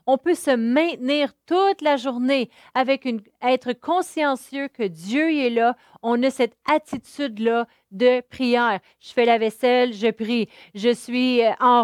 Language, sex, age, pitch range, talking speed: French, female, 40-59, 225-265 Hz, 155 wpm